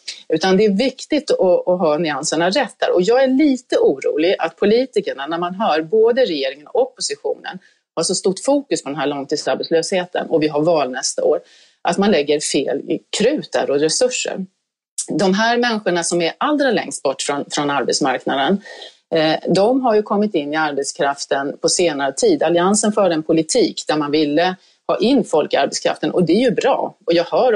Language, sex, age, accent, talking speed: Swedish, female, 30-49, native, 185 wpm